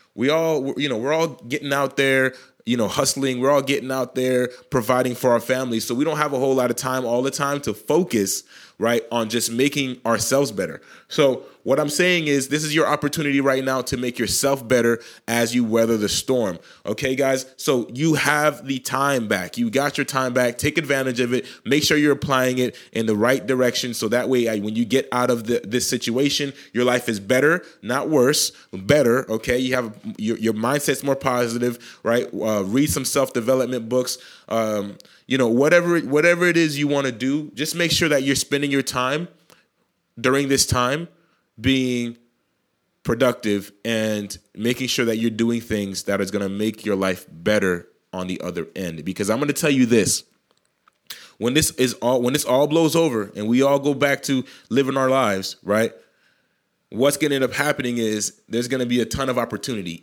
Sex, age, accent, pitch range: male, 30-49, American, 115-145 Hz